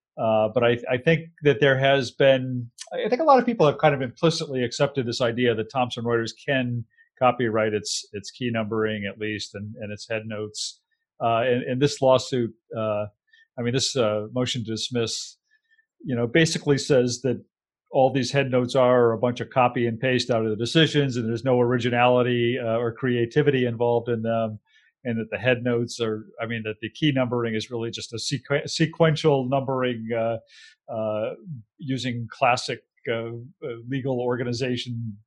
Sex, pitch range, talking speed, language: male, 115-140 Hz, 175 wpm, English